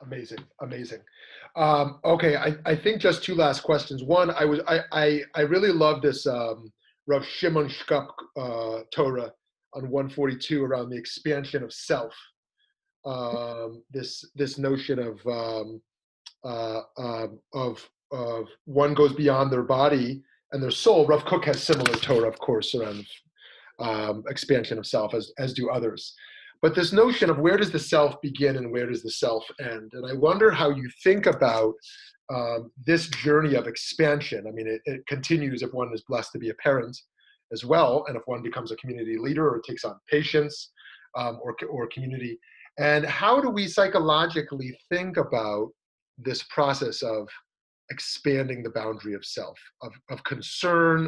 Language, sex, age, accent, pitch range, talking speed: English, male, 30-49, American, 115-155 Hz, 165 wpm